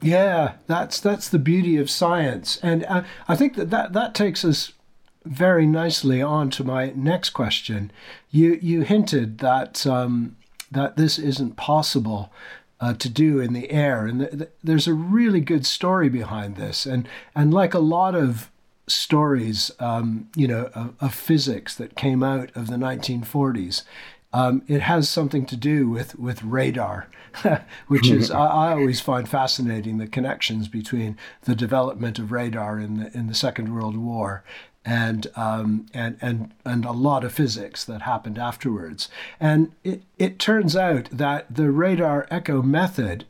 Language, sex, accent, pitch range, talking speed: English, male, American, 120-155 Hz, 165 wpm